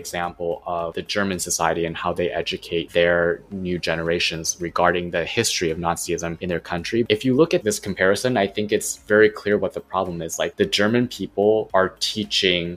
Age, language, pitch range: 20-39, English, 90-110 Hz